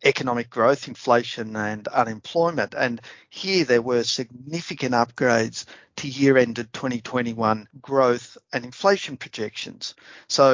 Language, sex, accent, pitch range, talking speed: English, male, Australian, 115-140 Hz, 115 wpm